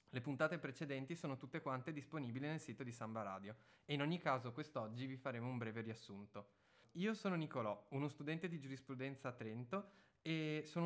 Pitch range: 120-150 Hz